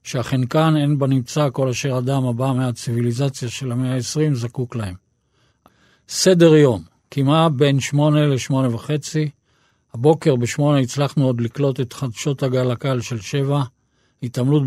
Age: 50-69